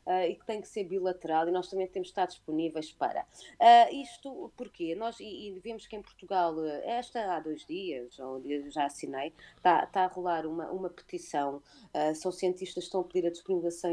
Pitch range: 150-180 Hz